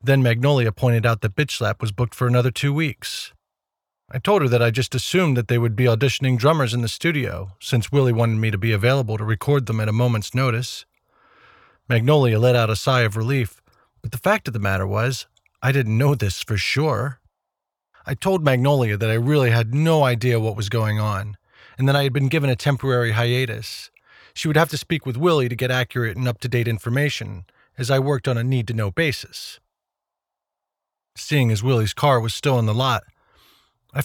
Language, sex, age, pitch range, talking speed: English, male, 40-59, 115-140 Hz, 200 wpm